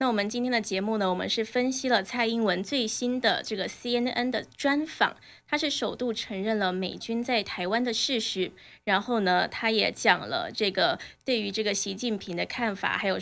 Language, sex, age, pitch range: Chinese, female, 20-39, 195-240 Hz